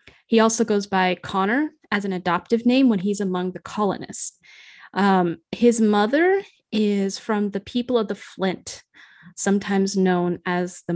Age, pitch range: 10-29, 185-225 Hz